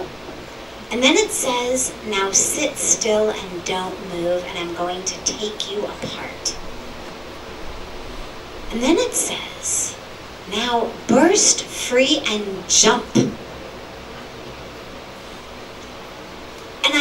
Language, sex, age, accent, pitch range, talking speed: English, female, 40-59, American, 215-275 Hz, 95 wpm